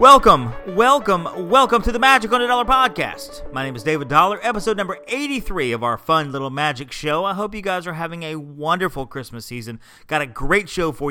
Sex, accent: male, American